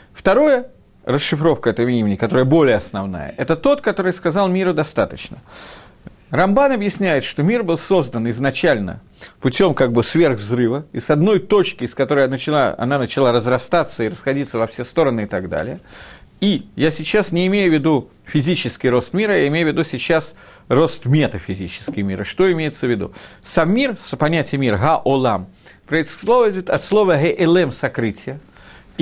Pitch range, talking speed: 140-200 Hz, 155 wpm